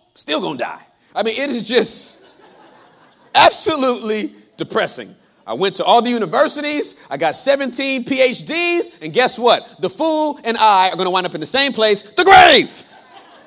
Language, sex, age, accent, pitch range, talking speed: English, male, 40-59, American, 185-250 Hz, 175 wpm